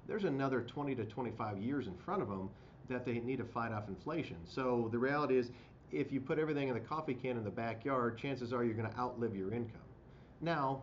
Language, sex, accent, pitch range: English, male, American, 110-130 Hz